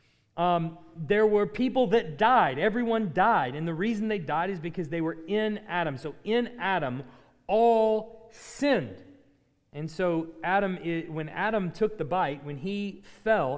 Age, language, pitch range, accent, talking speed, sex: 40-59, English, 165-220 Hz, American, 150 wpm, male